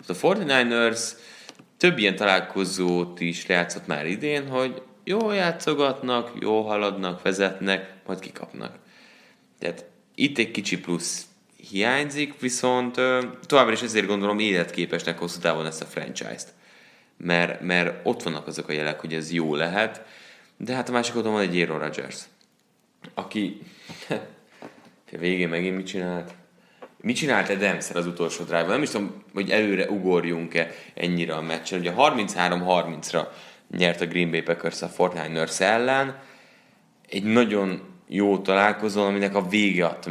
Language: Hungarian